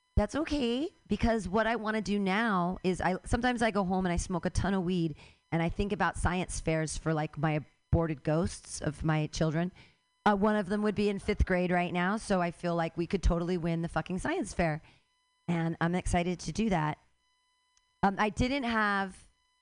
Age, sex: 40-59, female